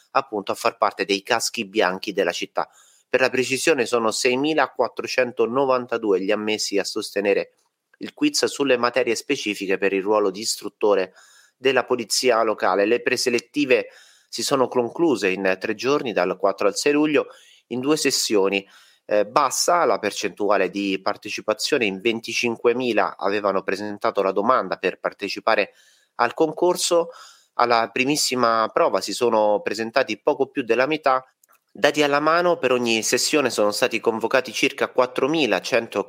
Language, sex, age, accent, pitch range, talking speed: Italian, male, 30-49, native, 105-140 Hz, 140 wpm